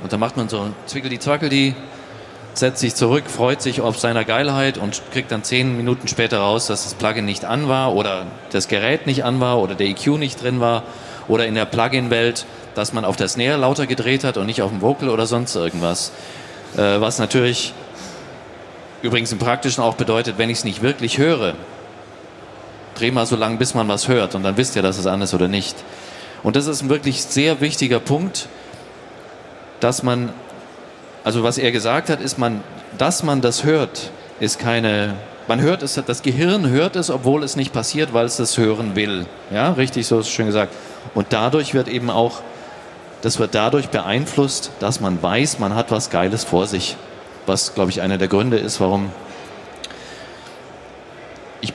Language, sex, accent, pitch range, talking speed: German, male, German, 105-130 Hz, 190 wpm